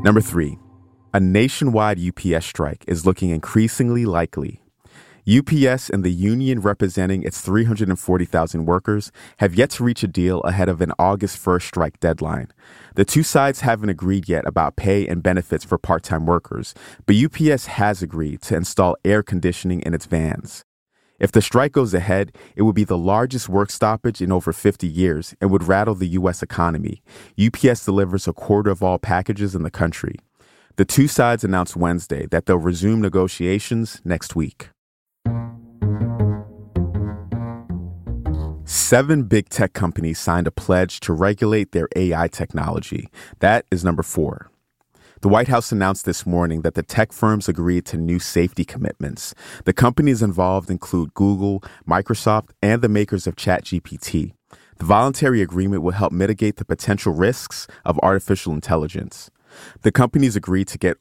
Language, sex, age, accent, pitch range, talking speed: English, male, 30-49, American, 90-110 Hz, 155 wpm